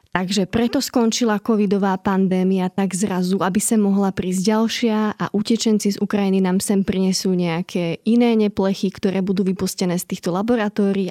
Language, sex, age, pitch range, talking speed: Slovak, female, 20-39, 185-215 Hz, 150 wpm